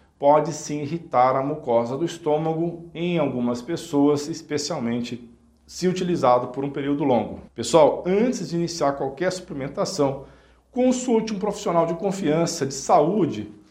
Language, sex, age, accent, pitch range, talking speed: Portuguese, male, 50-69, Brazilian, 145-185 Hz, 130 wpm